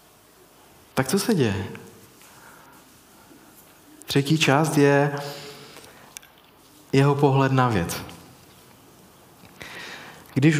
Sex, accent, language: male, native, Czech